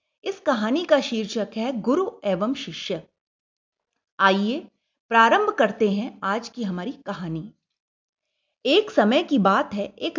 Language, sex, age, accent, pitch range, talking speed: Hindi, female, 30-49, native, 200-285 Hz, 130 wpm